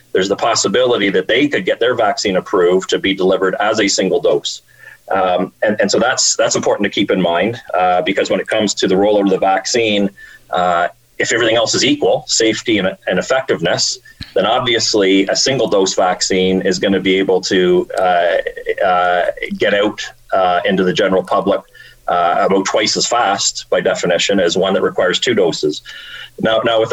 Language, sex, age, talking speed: English, male, 30-49, 190 wpm